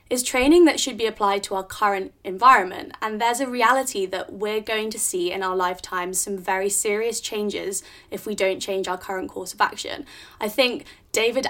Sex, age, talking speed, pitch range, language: female, 20-39, 200 wpm, 195-235 Hz, English